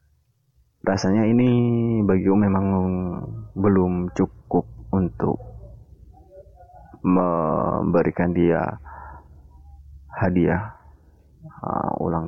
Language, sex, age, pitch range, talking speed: Indonesian, male, 30-49, 75-100 Hz, 65 wpm